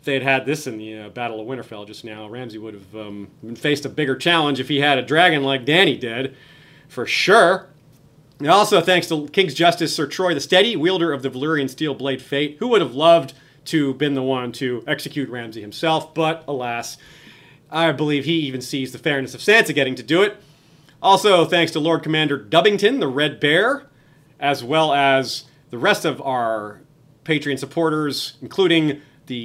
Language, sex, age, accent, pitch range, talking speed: English, male, 30-49, American, 135-165 Hz, 185 wpm